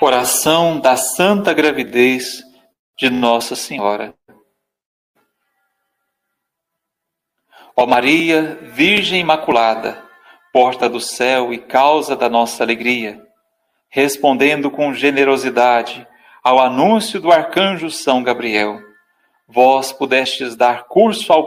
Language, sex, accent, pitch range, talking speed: Portuguese, male, Brazilian, 125-185 Hz, 90 wpm